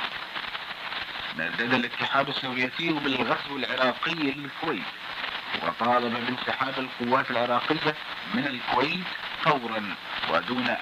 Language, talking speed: Italian, 80 wpm